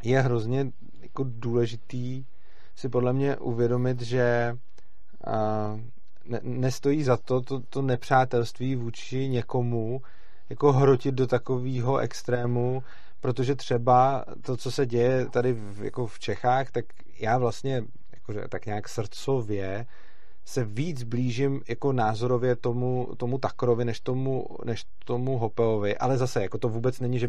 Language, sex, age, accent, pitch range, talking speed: Czech, male, 30-49, native, 115-130 Hz, 120 wpm